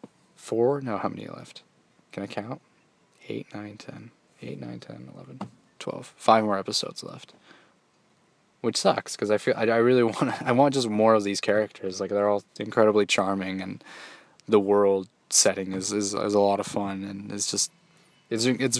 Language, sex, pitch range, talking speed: English, male, 100-125 Hz, 180 wpm